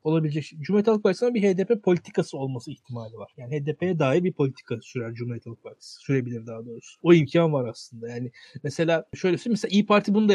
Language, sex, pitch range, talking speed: Turkish, male, 140-185 Hz, 195 wpm